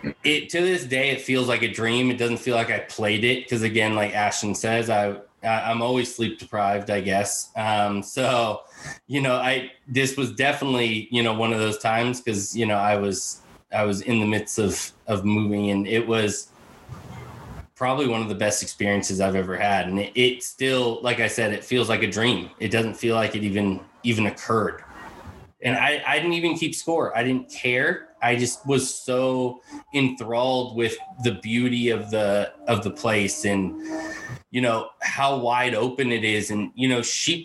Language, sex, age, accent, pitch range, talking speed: English, male, 20-39, American, 105-130 Hz, 195 wpm